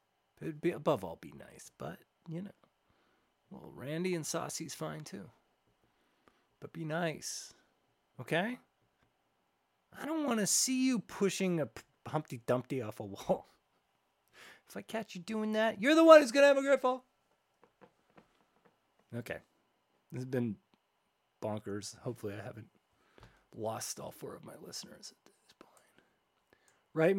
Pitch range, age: 125-185 Hz, 30-49